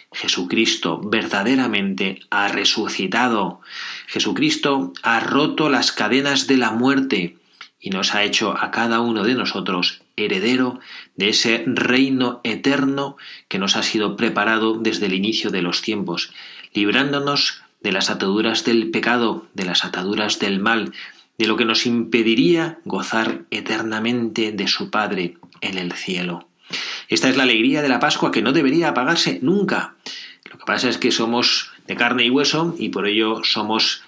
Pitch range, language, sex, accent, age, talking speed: 100-130 Hz, Spanish, male, Spanish, 30-49, 155 wpm